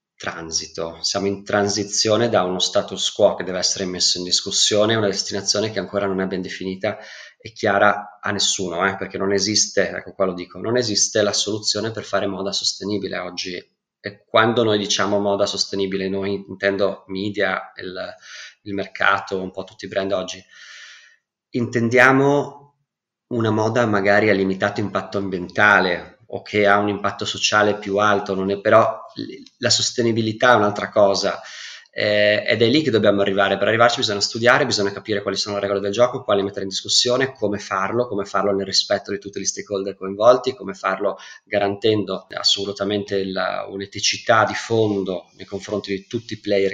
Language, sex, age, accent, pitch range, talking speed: Italian, male, 20-39, native, 95-110 Hz, 170 wpm